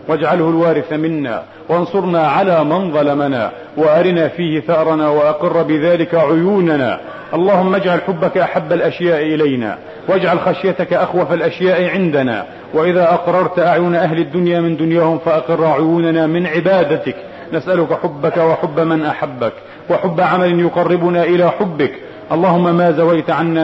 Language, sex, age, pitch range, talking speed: Arabic, male, 40-59, 145-175 Hz, 125 wpm